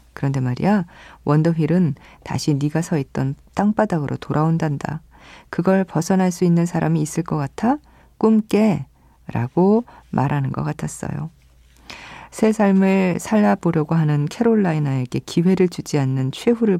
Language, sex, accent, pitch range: Korean, female, native, 145-185 Hz